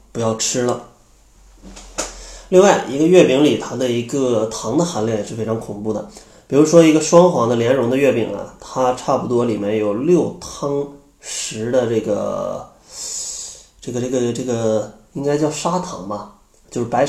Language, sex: Chinese, male